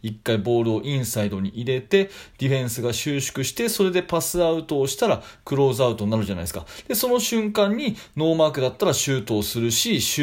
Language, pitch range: Japanese, 115-180 Hz